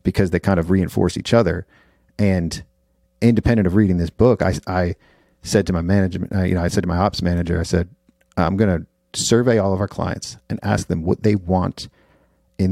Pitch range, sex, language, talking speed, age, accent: 90-105 Hz, male, English, 210 wpm, 40-59, American